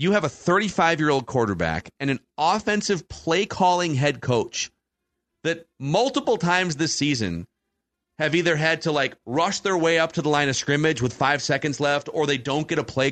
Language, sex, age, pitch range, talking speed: English, male, 40-59, 130-165 Hz, 190 wpm